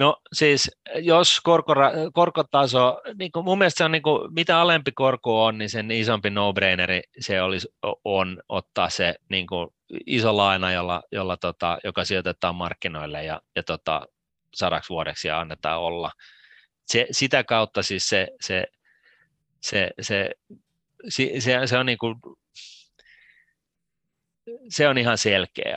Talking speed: 140 wpm